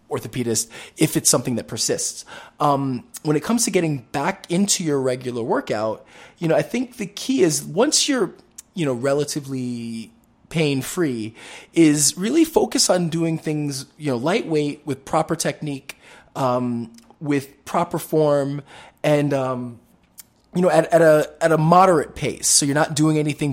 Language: English